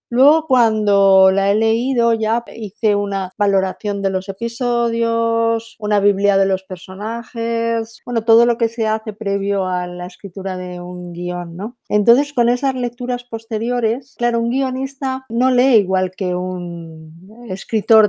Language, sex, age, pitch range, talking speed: Spanish, female, 50-69, 195-240 Hz, 150 wpm